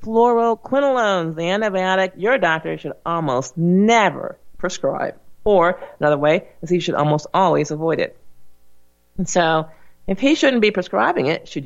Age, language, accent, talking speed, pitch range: 40-59, English, American, 145 wpm, 145-195 Hz